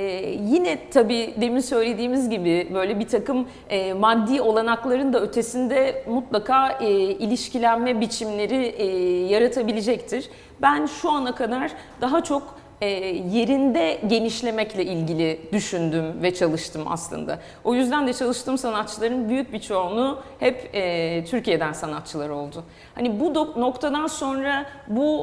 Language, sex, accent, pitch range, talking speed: Turkish, female, native, 200-255 Hz, 120 wpm